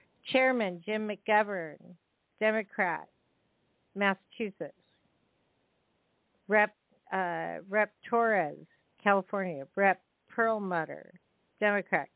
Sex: female